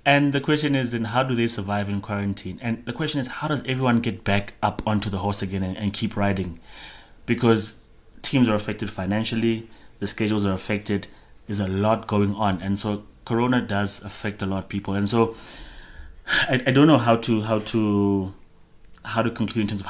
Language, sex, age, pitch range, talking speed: English, male, 30-49, 100-115 Hz, 205 wpm